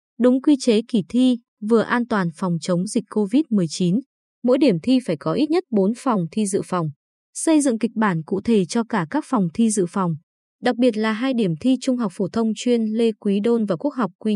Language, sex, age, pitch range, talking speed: Vietnamese, female, 20-39, 195-250 Hz, 230 wpm